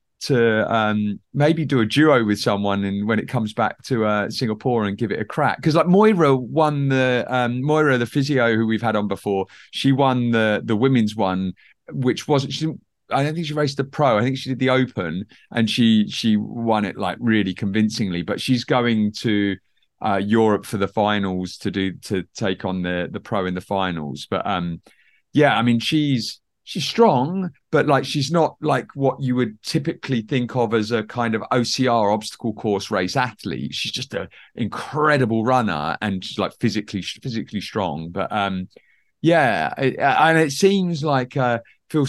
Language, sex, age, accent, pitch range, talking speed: English, male, 30-49, British, 100-130 Hz, 190 wpm